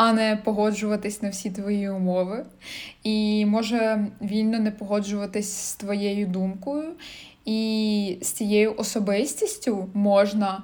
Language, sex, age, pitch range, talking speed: Ukrainian, female, 20-39, 205-245 Hz, 115 wpm